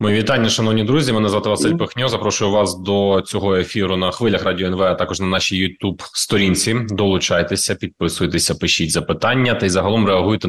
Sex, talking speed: male, 170 wpm